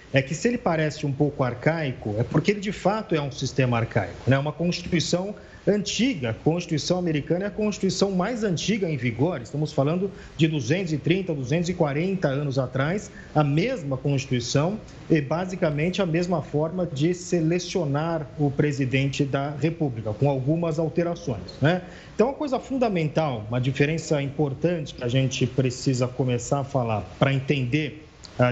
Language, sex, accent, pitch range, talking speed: Portuguese, male, Brazilian, 135-185 Hz, 155 wpm